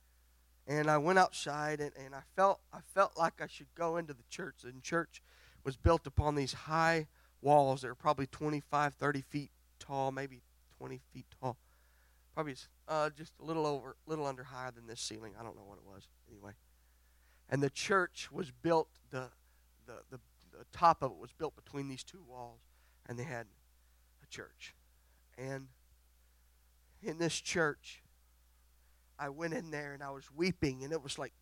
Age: 40-59